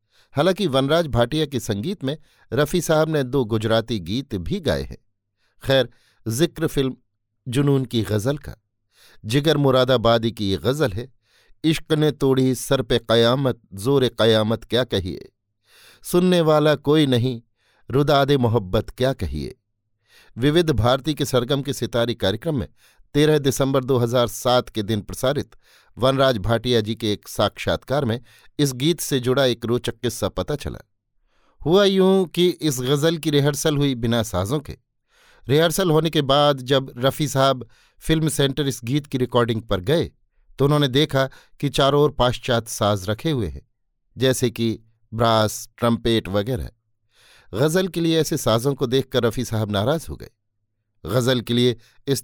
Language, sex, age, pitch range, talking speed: Hindi, male, 50-69, 110-145 Hz, 150 wpm